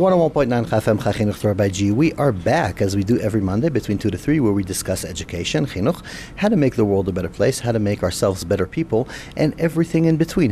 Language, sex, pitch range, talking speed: English, male, 100-125 Hz, 200 wpm